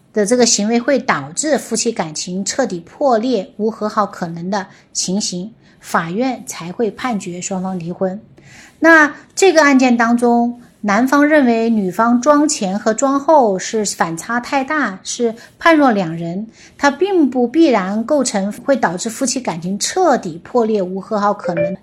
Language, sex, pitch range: Chinese, female, 200-265 Hz